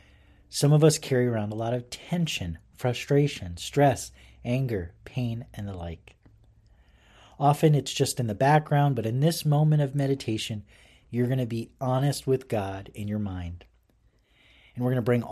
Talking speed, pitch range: 170 wpm, 95-135 Hz